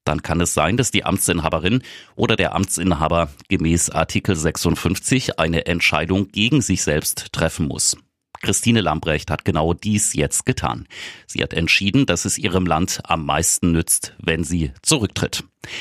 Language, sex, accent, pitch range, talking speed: German, male, German, 85-100 Hz, 150 wpm